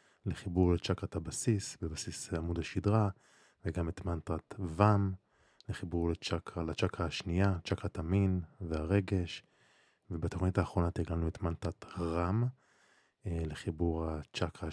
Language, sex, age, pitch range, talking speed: Hebrew, male, 20-39, 85-100 Hz, 100 wpm